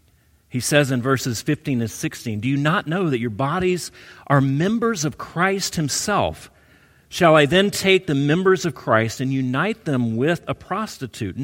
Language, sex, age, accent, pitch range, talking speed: English, male, 40-59, American, 110-160 Hz, 175 wpm